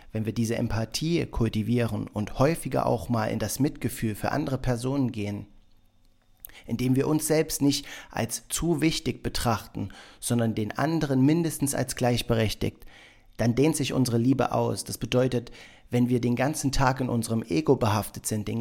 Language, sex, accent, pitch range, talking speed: German, male, German, 110-130 Hz, 160 wpm